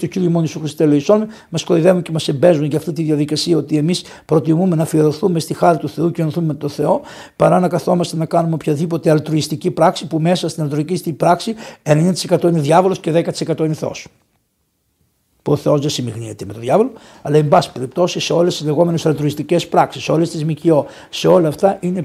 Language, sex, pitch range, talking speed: Greek, male, 150-180 Hz, 210 wpm